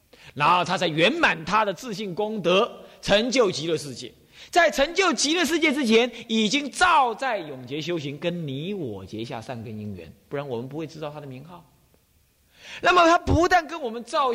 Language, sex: Chinese, male